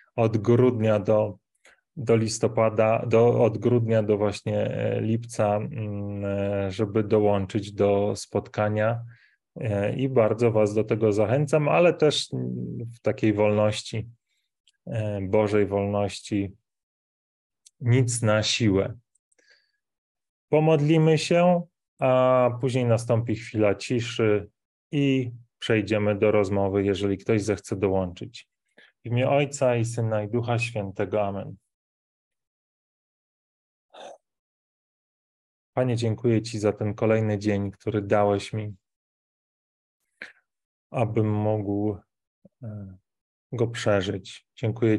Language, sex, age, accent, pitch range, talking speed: Polish, male, 20-39, native, 105-115 Hz, 90 wpm